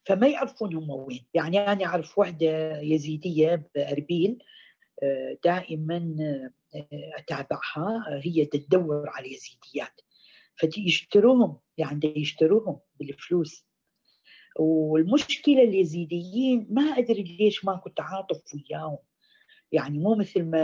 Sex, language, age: female, Arabic, 50-69